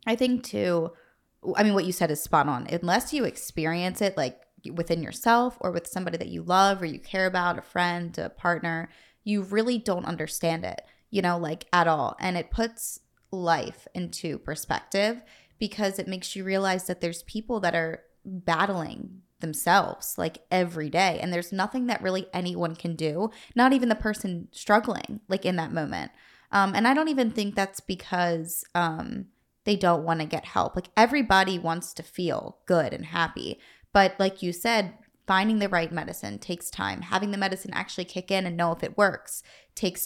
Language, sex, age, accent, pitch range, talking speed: English, female, 20-39, American, 170-210 Hz, 190 wpm